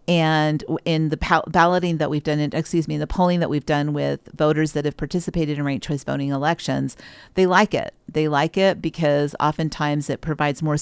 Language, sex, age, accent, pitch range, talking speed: English, female, 50-69, American, 150-185 Hz, 210 wpm